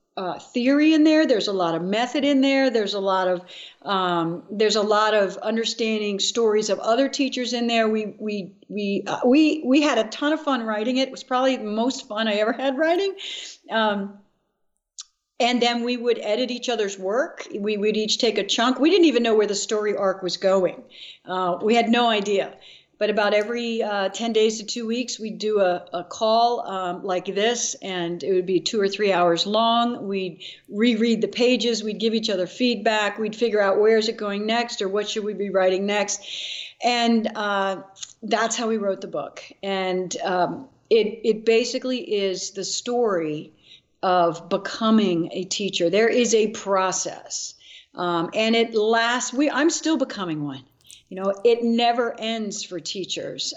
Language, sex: English, female